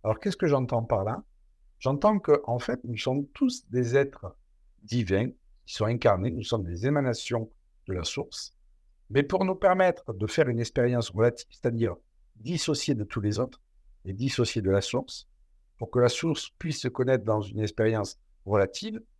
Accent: French